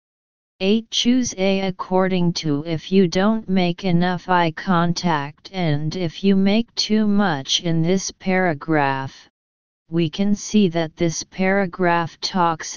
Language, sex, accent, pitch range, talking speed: English, female, American, 160-195 Hz, 130 wpm